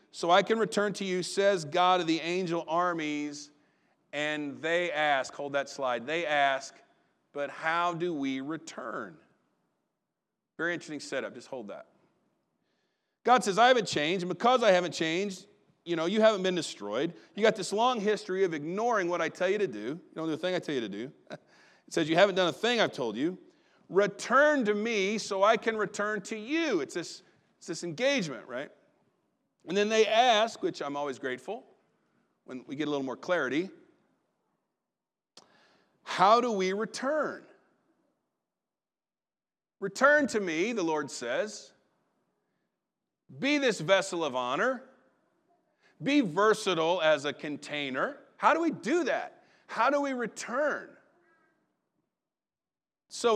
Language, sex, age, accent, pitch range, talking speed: English, male, 40-59, American, 160-240 Hz, 155 wpm